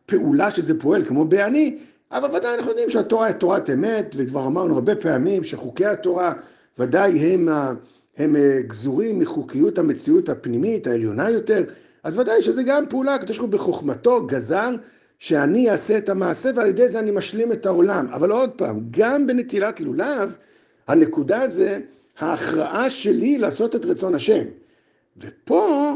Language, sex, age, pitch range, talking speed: Hebrew, male, 50-69, 195-285 Hz, 150 wpm